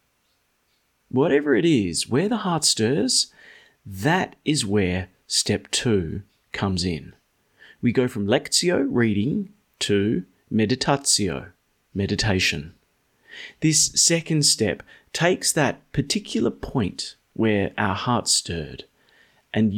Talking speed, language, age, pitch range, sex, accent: 105 wpm, English, 30-49, 105-140 Hz, male, Australian